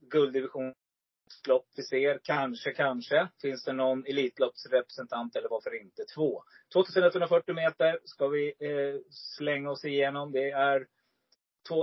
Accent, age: native, 30-49